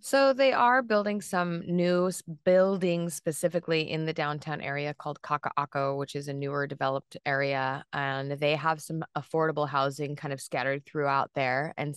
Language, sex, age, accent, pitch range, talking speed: English, female, 20-39, American, 135-160 Hz, 160 wpm